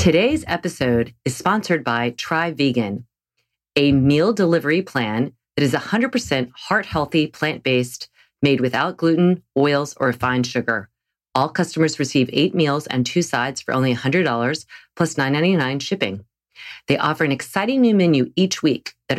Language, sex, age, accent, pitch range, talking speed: English, female, 40-59, American, 125-165 Hz, 140 wpm